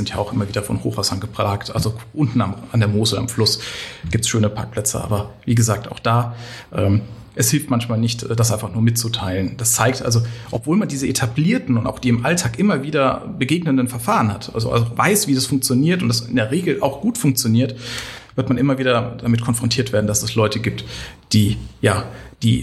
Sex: male